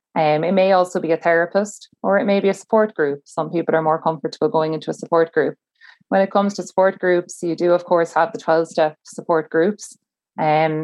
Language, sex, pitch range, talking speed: English, female, 155-170 Hz, 220 wpm